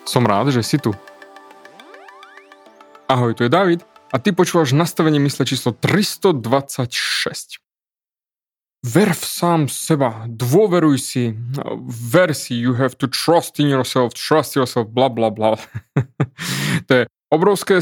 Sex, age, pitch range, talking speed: male, 20-39, 125-170 Hz, 125 wpm